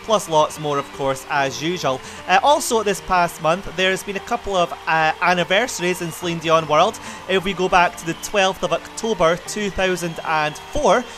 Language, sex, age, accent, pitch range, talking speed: English, male, 30-49, British, 135-185 Hz, 175 wpm